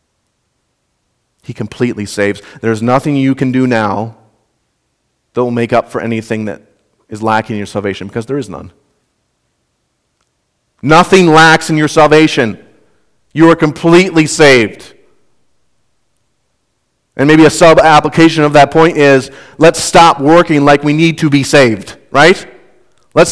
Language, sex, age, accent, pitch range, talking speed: English, male, 40-59, American, 105-145 Hz, 135 wpm